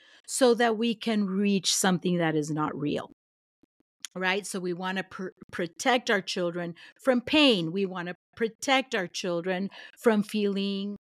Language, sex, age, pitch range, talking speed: English, female, 50-69, 180-235 Hz, 150 wpm